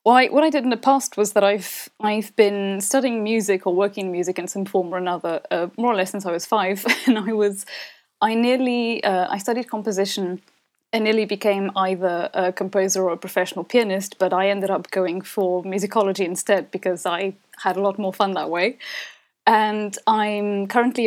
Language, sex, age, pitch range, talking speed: English, female, 20-39, 190-225 Hz, 195 wpm